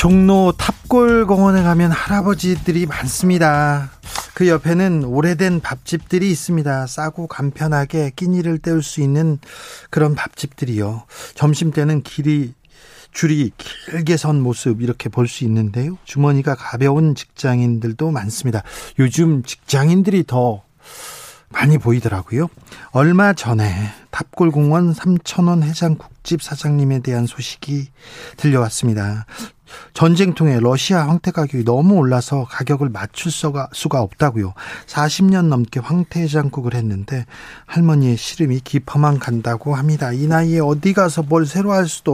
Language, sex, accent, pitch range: Korean, male, native, 130-170 Hz